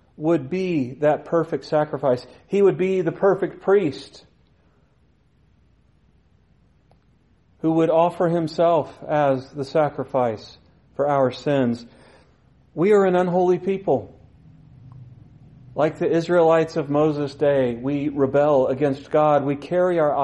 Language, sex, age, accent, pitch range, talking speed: English, male, 40-59, American, 135-175 Hz, 115 wpm